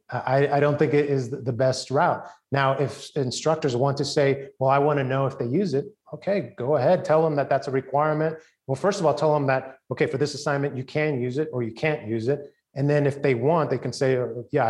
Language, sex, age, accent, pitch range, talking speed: English, male, 30-49, American, 130-155 Hz, 255 wpm